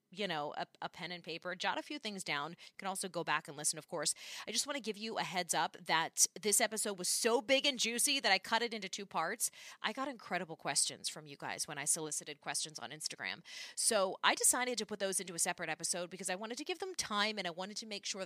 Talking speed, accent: 265 wpm, American